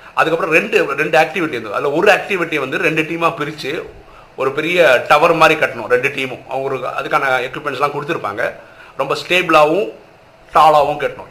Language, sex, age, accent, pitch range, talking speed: Tamil, male, 50-69, native, 135-210 Hz, 145 wpm